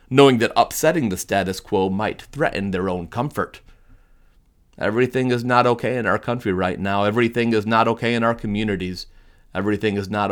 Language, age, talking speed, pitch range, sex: English, 30-49, 175 wpm, 90-115 Hz, male